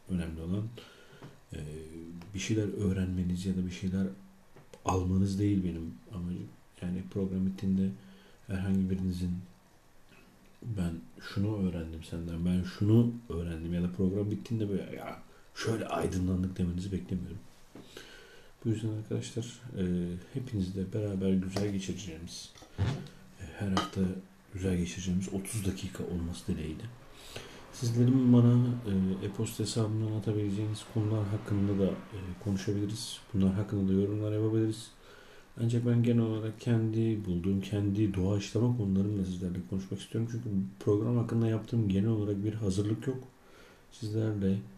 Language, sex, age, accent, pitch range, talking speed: Turkish, male, 50-69, native, 95-110 Hz, 115 wpm